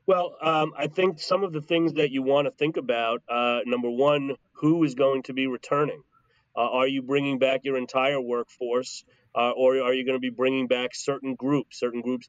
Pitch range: 125-145 Hz